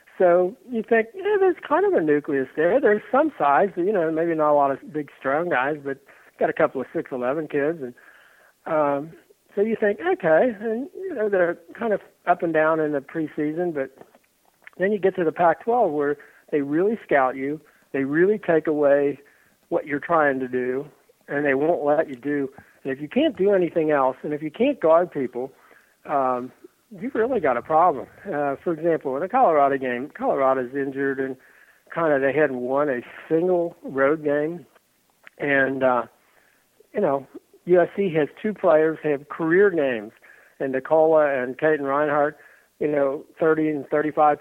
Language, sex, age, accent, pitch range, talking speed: English, male, 60-79, American, 140-185 Hz, 185 wpm